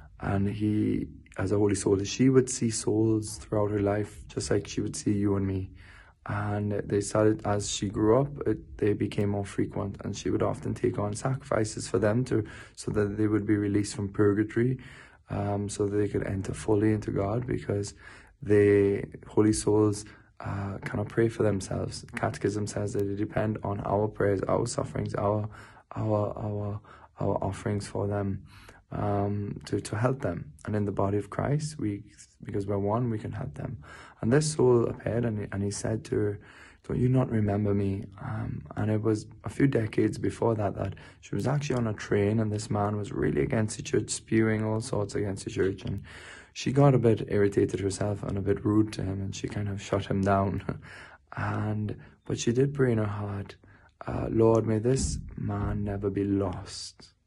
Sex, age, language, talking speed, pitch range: male, 20-39, English, 195 wpm, 100-115 Hz